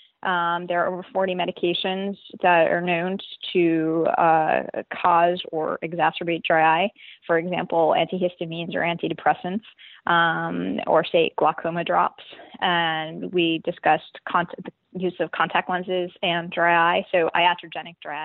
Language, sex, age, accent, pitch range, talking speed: English, female, 20-39, American, 170-195 Hz, 130 wpm